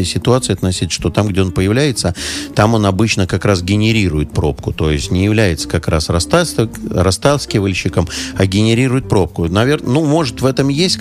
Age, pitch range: 50-69, 95-115 Hz